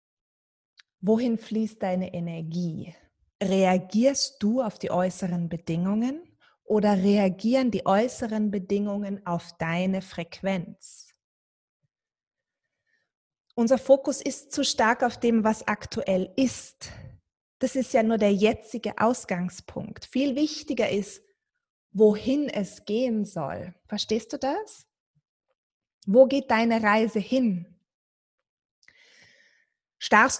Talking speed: 100 wpm